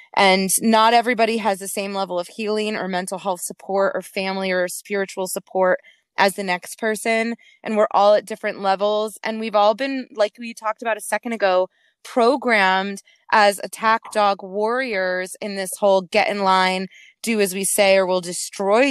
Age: 20-39